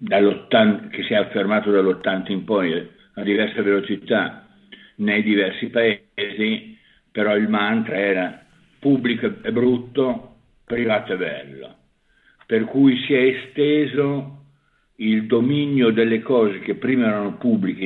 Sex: male